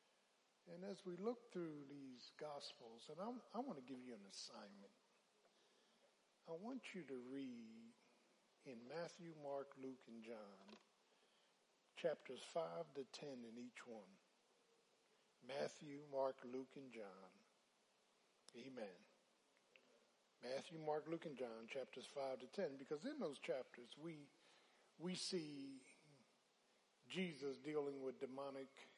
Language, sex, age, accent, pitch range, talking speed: English, male, 50-69, American, 125-165 Hz, 120 wpm